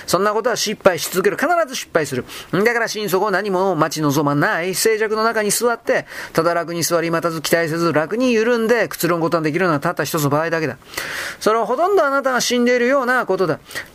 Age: 40-59